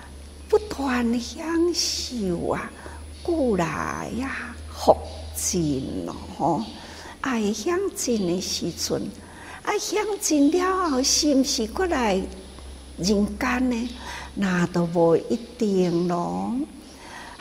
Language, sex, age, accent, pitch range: Chinese, female, 60-79, American, 170-265 Hz